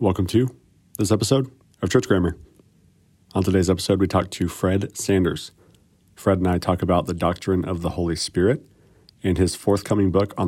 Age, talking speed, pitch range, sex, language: 40-59, 180 wpm, 90-105 Hz, male, English